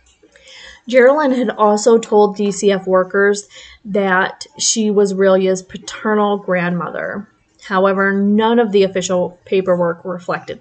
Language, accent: English, American